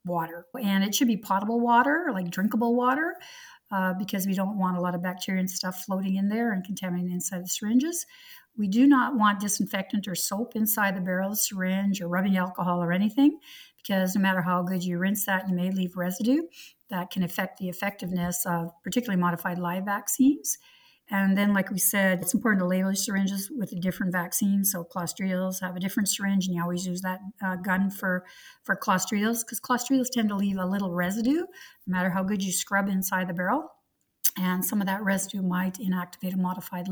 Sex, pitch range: female, 185-220 Hz